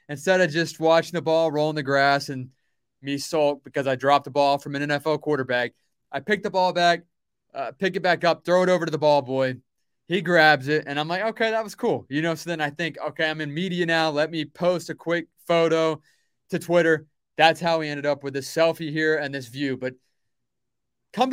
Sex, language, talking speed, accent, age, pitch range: male, English, 230 wpm, American, 20-39, 145-175 Hz